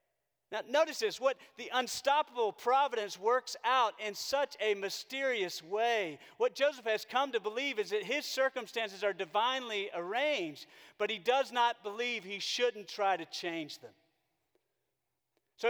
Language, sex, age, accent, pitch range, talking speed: English, male, 40-59, American, 155-240 Hz, 150 wpm